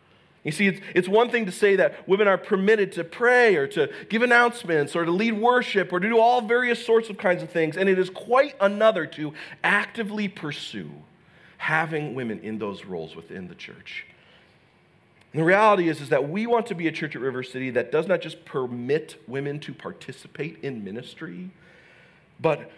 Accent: American